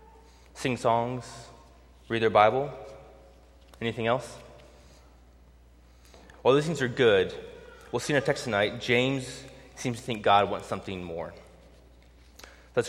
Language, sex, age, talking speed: English, male, 20-39, 125 wpm